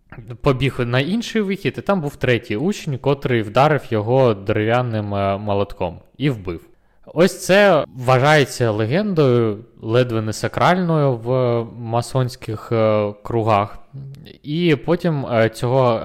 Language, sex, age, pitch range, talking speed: Ukrainian, male, 20-39, 110-140 Hz, 115 wpm